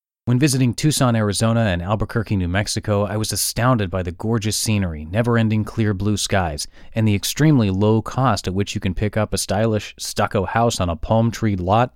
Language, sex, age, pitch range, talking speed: English, male, 30-49, 95-115 Hz, 190 wpm